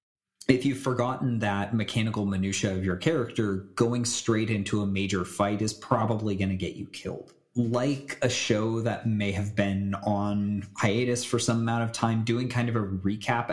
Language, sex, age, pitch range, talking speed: English, male, 30-49, 100-120 Hz, 180 wpm